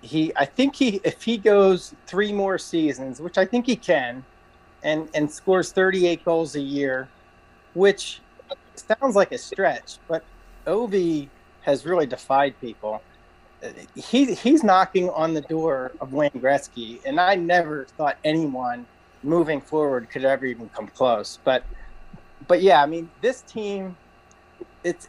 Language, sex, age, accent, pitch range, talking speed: English, male, 30-49, American, 140-185 Hz, 150 wpm